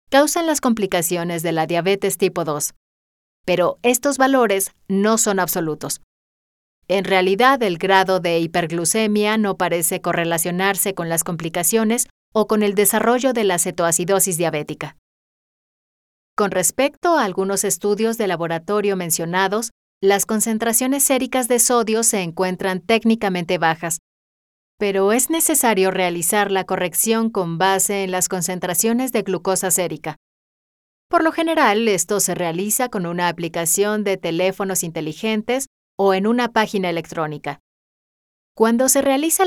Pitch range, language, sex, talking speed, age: 175-220 Hz, Spanish, female, 130 wpm, 30-49